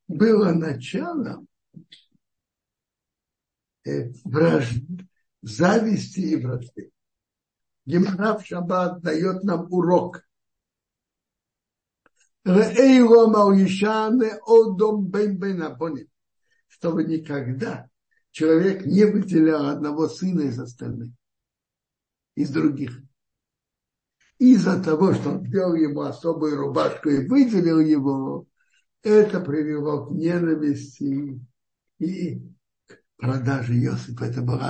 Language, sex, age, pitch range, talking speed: Russian, male, 60-79, 140-205 Hz, 75 wpm